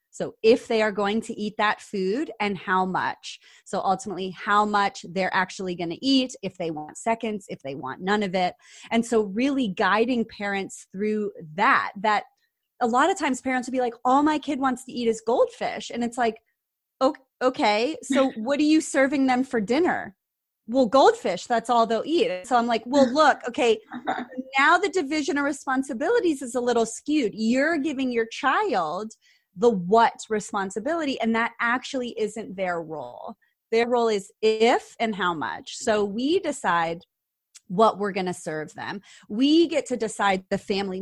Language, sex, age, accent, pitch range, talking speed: English, female, 30-49, American, 200-265 Hz, 180 wpm